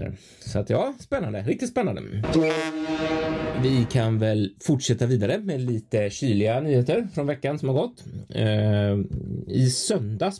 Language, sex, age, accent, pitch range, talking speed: Swedish, male, 30-49, native, 105-145 Hz, 135 wpm